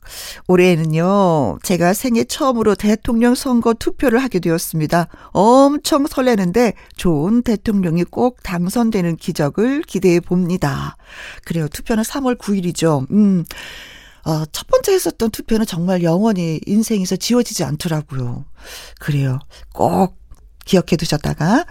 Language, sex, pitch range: Korean, female, 175-235 Hz